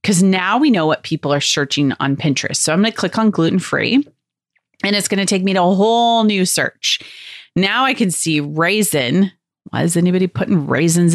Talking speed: 205 wpm